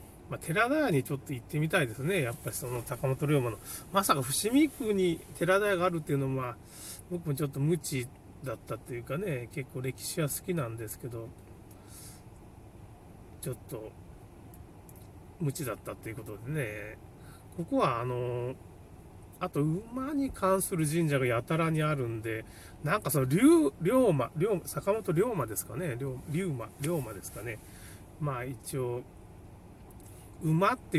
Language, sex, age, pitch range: Japanese, male, 30-49, 110-160 Hz